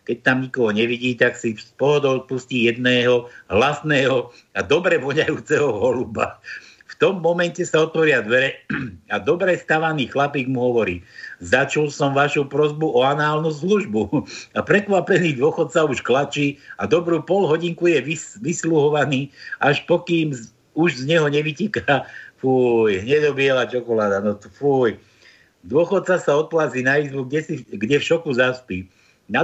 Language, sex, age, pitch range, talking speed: Slovak, male, 60-79, 125-170 Hz, 140 wpm